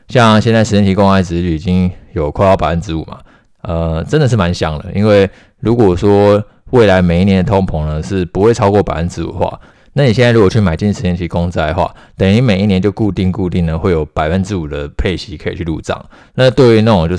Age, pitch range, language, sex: 20-39, 85-105 Hz, Chinese, male